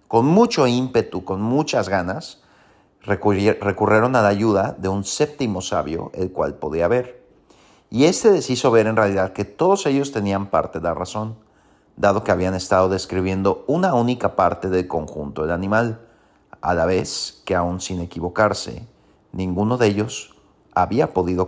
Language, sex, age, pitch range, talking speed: Spanish, male, 40-59, 95-115 Hz, 160 wpm